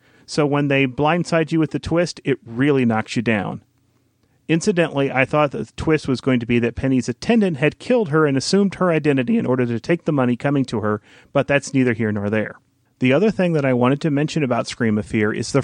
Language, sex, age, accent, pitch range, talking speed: English, male, 40-59, American, 120-160 Hz, 235 wpm